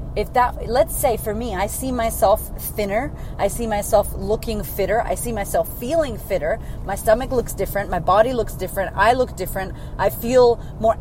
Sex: female